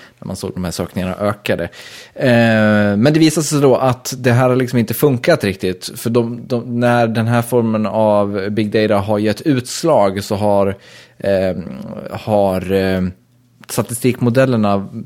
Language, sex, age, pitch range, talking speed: Swedish, male, 20-39, 95-120 Hz, 160 wpm